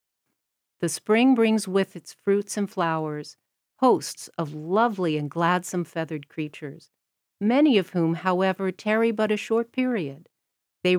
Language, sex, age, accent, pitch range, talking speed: English, female, 50-69, American, 155-200 Hz, 135 wpm